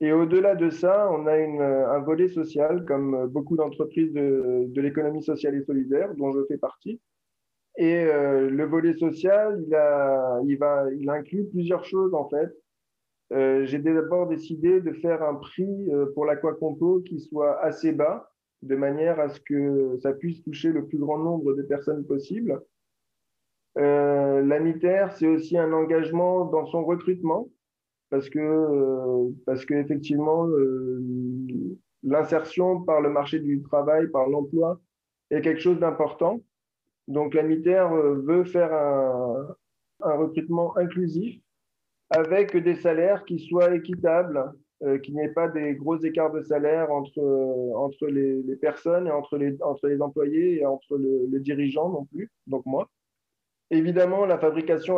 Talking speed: 155 wpm